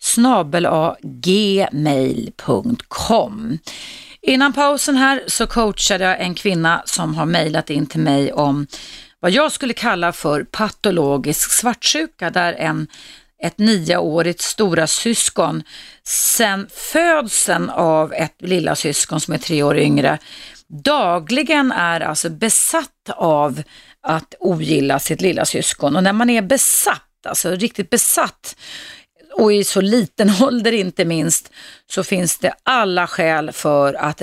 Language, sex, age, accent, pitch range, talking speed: Swedish, female, 30-49, native, 155-220 Hz, 125 wpm